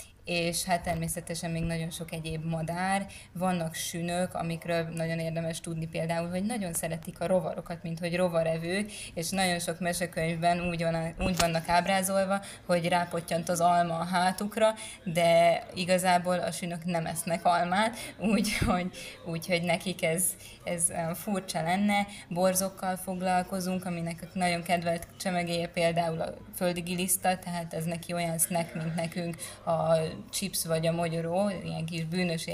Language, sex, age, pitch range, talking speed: Hungarian, female, 20-39, 165-180 Hz, 135 wpm